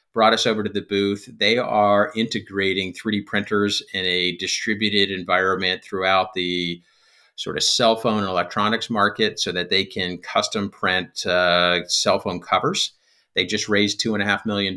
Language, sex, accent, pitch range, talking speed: English, male, American, 90-105 Hz, 165 wpm